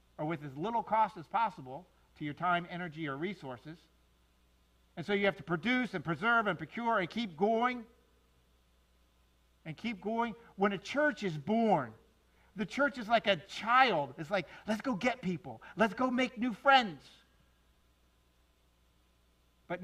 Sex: male